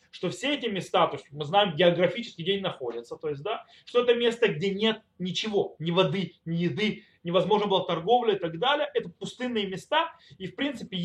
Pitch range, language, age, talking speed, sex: 165-245 Hz, Russian, 20-39, 200 wpm, male